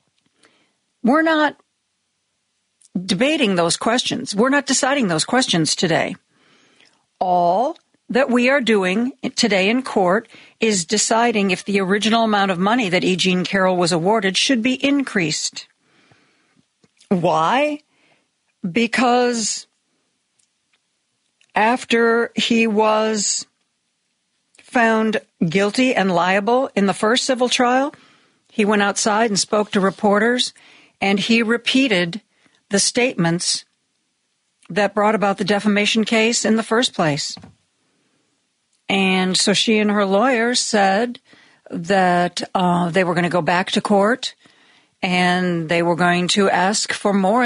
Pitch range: 195-245 Hz